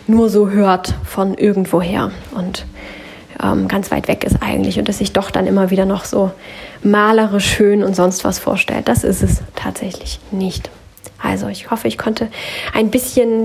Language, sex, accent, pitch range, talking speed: German, female, German, 190-215 Hz, 175 wpm